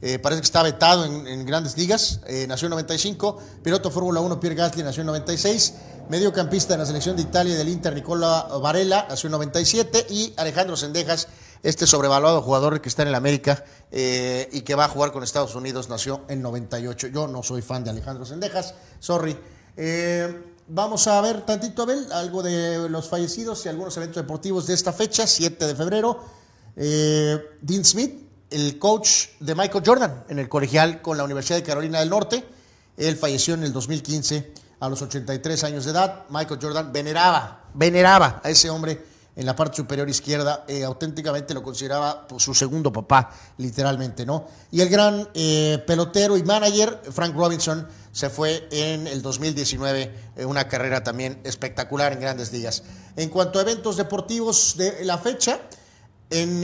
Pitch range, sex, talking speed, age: 140-180 Hz, male, 180 wpm, 40-59